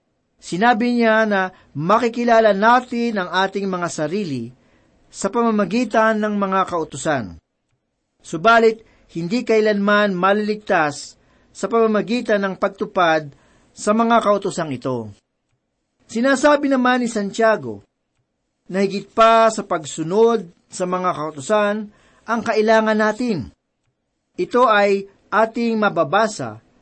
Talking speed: 100 wpm